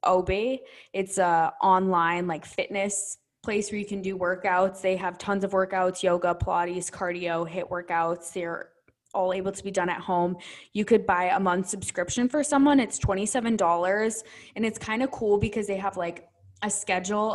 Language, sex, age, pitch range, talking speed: English, female, 20-39, 175-200 Hz, 175 wpm